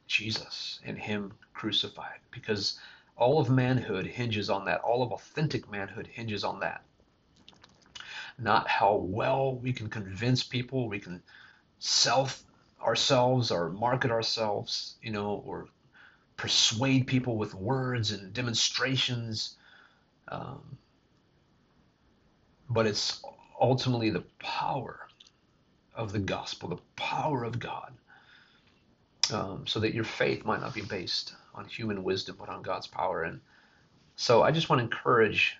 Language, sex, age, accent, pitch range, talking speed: English, male, 40-59, American, 105-125 Hz, 130 wpm